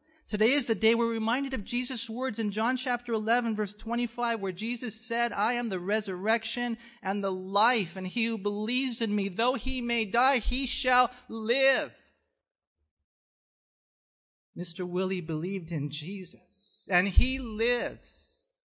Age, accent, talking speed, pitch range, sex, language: 40-59, American, 150 wpm, 170-235 Hz, male, English